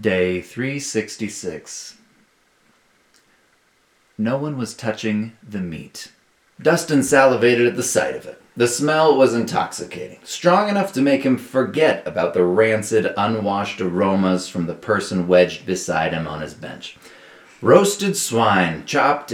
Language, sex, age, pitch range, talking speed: English, male, 30-49, 90-135 Hz, 130 wpm